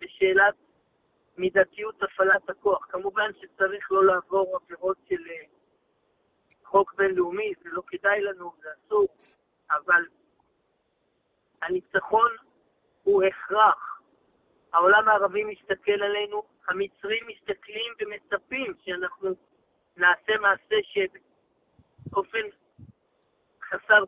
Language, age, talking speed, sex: Hebrew, 50-69, 85 wpm, male